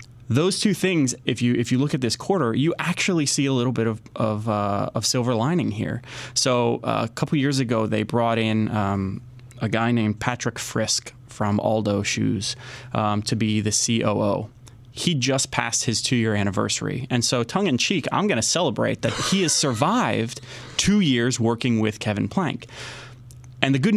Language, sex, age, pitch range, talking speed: English, male, 20-39, 110-130 Hz, 180 wpm